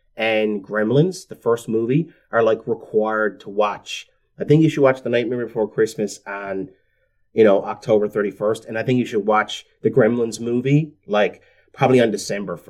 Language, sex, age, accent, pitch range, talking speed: English, male, 30-49, American, 105-150 Hz, 175 wpm